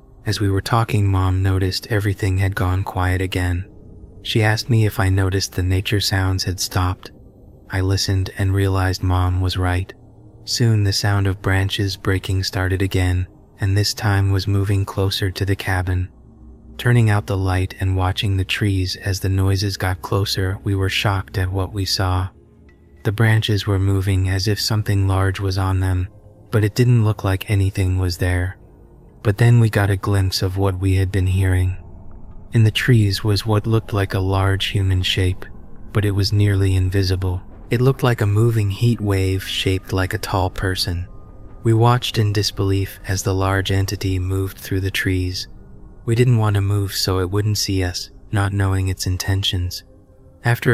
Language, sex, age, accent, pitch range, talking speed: English, male, 20-39, American, 95-105 Hz, 180 wpm